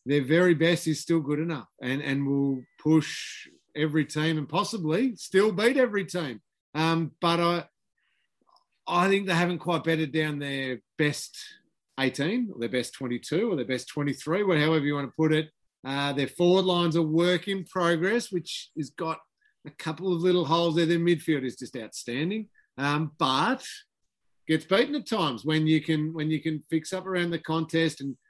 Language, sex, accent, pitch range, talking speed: English, male, Australian, 150-185 Hz, 180 wpm